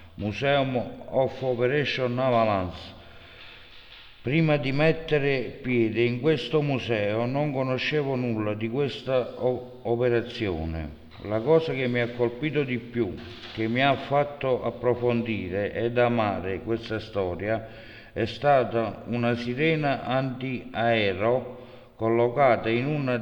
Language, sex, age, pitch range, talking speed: Italian, male, 60-79, 110-130 Hz, 110 wpm